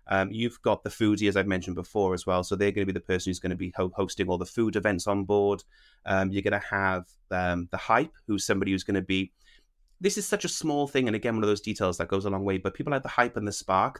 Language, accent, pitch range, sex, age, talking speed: English, British, 90-110 Hz, male, 30-49, 290 wpm